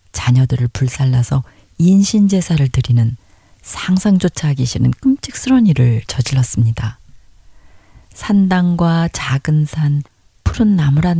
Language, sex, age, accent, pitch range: Korean, female, 40-59, native, 120-165 Hz